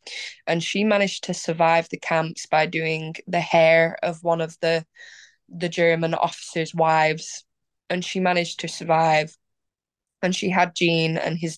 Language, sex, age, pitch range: English, female, 10-29, 165-185 Hz